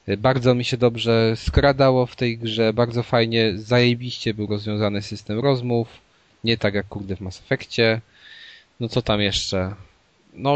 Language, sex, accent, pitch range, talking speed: Polish, male, native, 100-120 Hz, 155 wpm